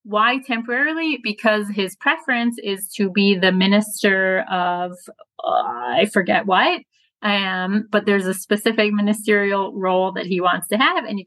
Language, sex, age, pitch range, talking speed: English, female, 30-49, 185-220 Hz, 155 wpm